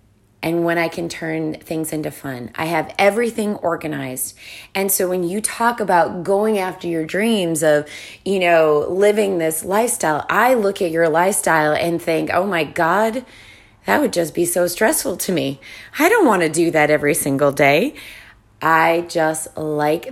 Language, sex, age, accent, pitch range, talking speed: English, female, 20-39, American, 150-185 Hz, 175 wpm